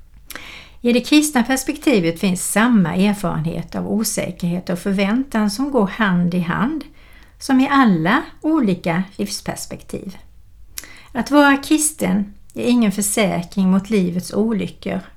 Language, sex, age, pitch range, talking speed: Swedish, female, 60-79, 180-230 Hz, 120 wpm